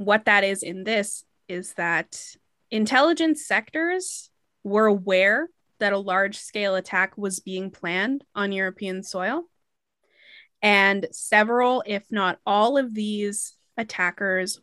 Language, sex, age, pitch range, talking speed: English, female, 20-39, 200-245 Hz, 120 wpm